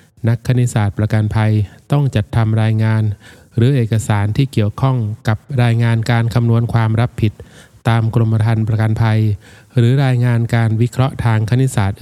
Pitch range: 110-120 Hz